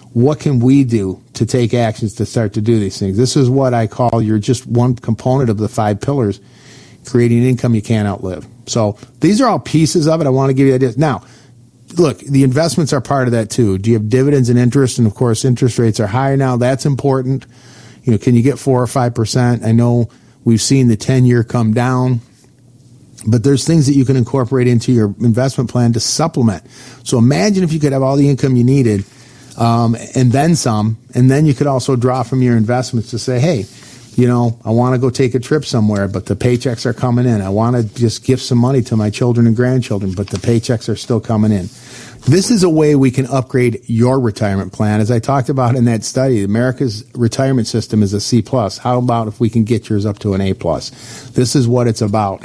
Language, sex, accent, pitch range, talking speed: English, male, American, 110-130 Hz, 230 wpm